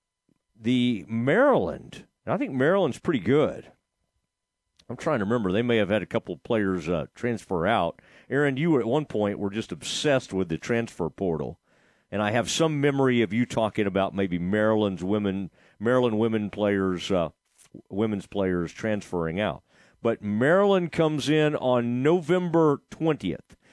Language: English